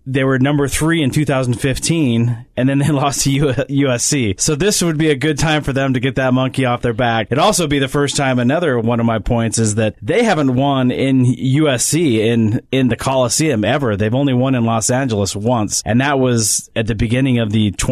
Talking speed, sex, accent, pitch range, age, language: 225 wpm, male, American, 115-140 Hz, 30-49, English